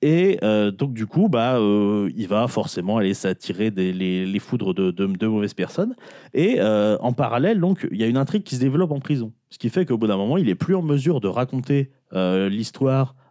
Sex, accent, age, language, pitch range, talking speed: male, French, 30-49, French, 100-145 Hz, 230 wpm